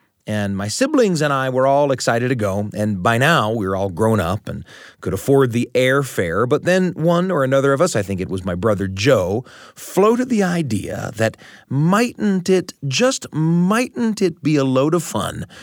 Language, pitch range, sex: English, 110-150 Hz, male